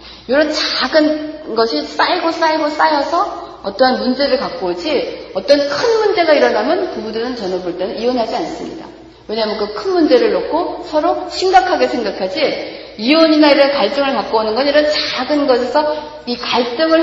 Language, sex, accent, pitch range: Korean, female, native, 245-320 Hz